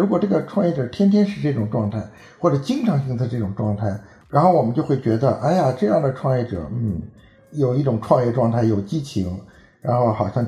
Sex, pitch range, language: male, 110-160 Hz, Chinese